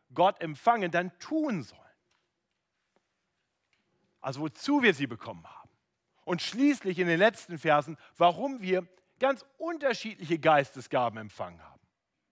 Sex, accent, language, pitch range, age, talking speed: male, German, German, 135-190 Hz, 50-69, 115 wpm